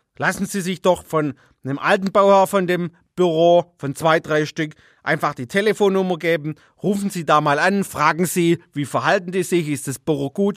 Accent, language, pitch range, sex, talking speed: German, German, 150-195 Hz, male, 195 wpm